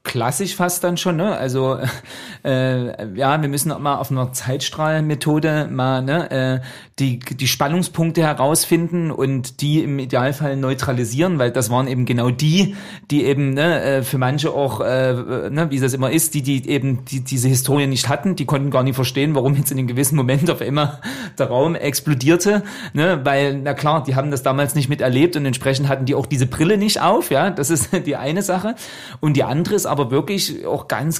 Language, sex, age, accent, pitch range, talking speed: German, male, 40-59, German, 135-180 Hz, 200 wpm